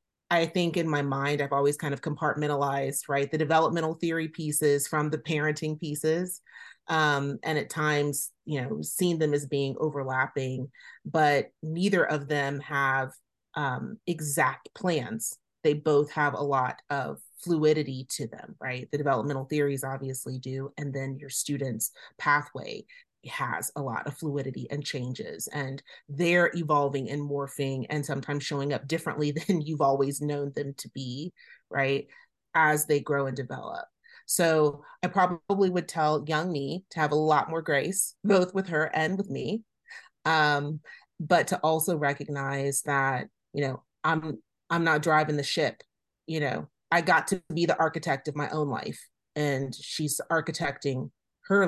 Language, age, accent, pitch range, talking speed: English, 30-49, American, 140-160 Hz, 160 wpm